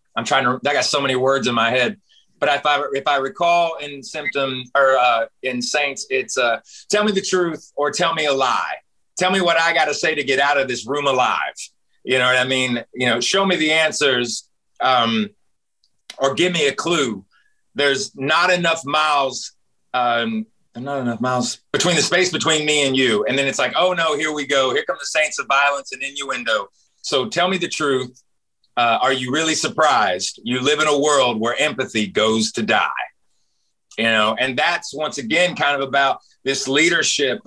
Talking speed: 205 wpm